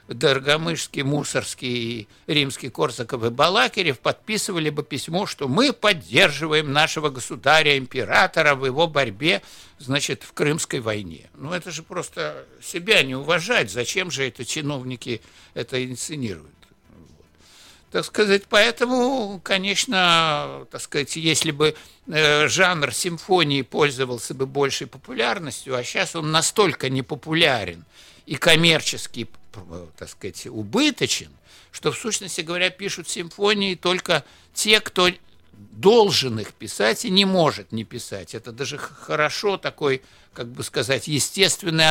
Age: 60-79